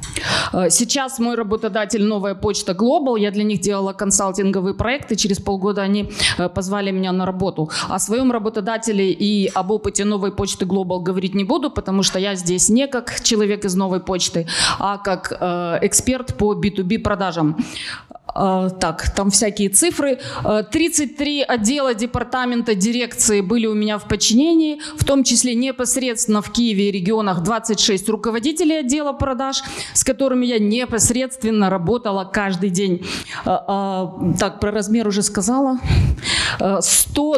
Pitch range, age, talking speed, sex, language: 195-240 Hz, 20-39, 135 wpm, female, Ukrainian